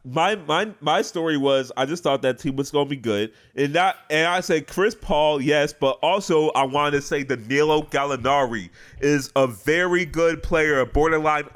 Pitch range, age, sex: 130-165 Hz, 30-49, male